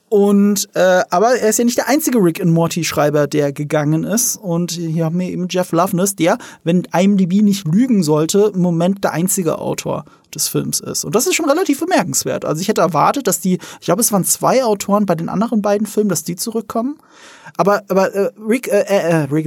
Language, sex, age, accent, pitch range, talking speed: German, male, 30-49, German, 160-200 Hz, 215 wpm